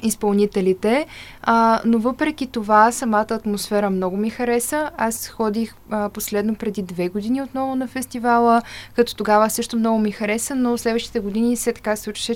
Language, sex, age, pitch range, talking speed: Bulgarian, female, 20-39, 205-235 Hz, 155 wpm